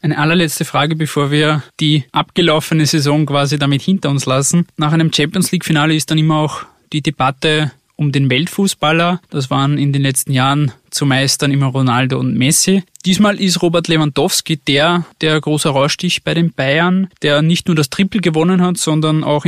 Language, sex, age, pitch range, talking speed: German, male, 20-39, 125-185 Hz, 175 wpm